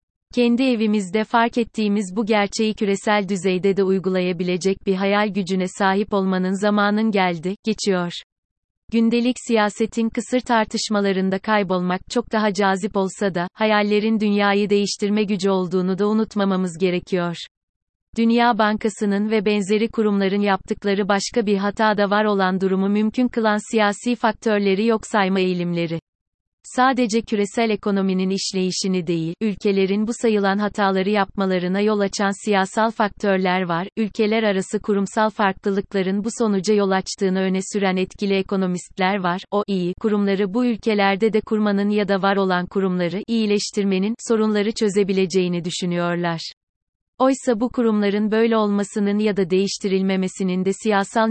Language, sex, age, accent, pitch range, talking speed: Turkish, female, 30-49, native, 190-220 Hz, 125 wpm